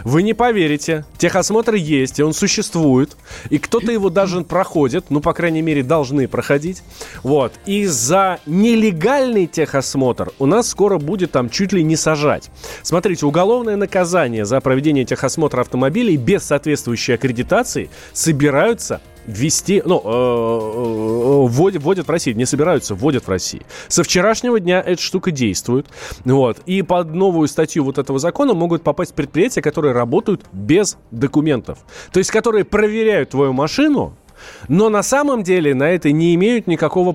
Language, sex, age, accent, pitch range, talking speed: Russian, male, 20-39, native, 130-185 Hz, 145 wpm